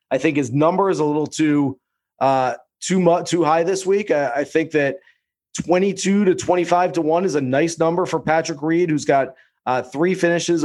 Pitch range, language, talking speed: 145-165 Hz, English, 205 wpm